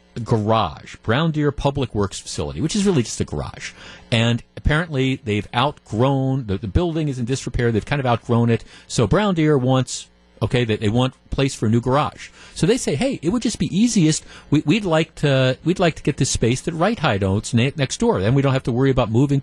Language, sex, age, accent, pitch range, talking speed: English, male, 40-59, American, 130-175 Hz, 225 wpm